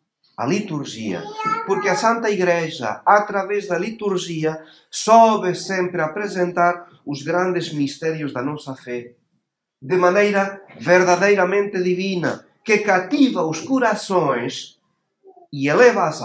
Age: 50-69